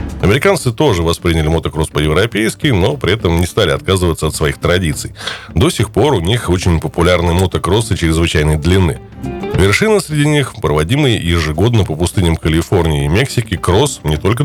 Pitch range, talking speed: 85-115 Hz, 155 wpm